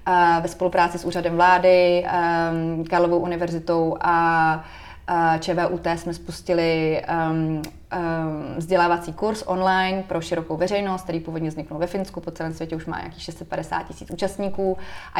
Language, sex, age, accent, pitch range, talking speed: Czech, female, 20-39, native, 165-175 Hz, 140 wpm